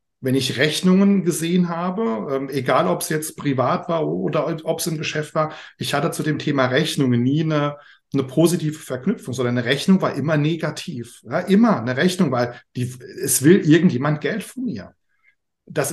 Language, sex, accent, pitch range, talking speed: German, male, German, 135-175 Hz, 170 wpm